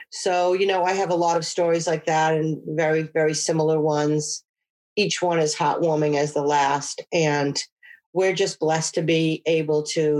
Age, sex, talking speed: 40-59, female, 180 wpm